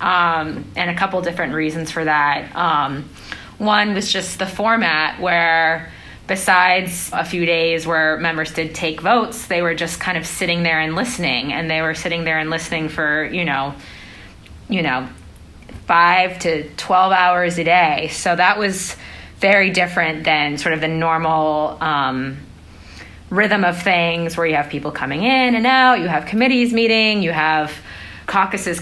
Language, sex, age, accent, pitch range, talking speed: English, female, 20-39, American, 155-195 Hz, 165 wpm